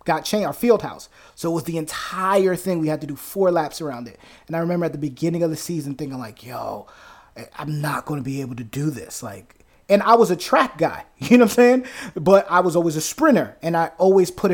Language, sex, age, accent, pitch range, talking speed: English, male, 20-39, American, 145-185 Hz, 255 wpm